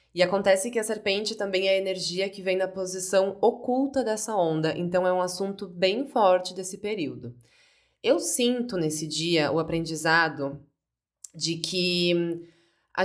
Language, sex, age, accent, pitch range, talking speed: Portuguese, female, 20-39, Brazilian, 170-215 Hz, 150 wpm